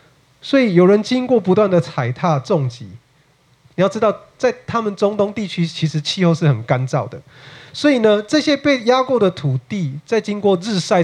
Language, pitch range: Chinese, 140-210 Hz